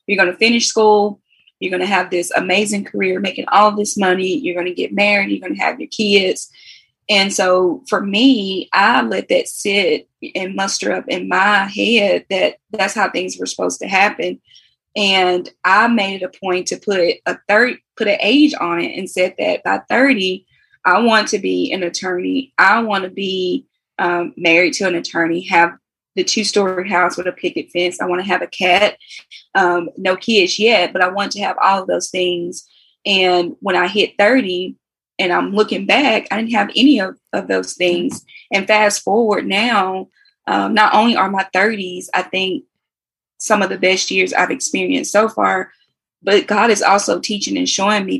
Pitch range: 180-215 Hz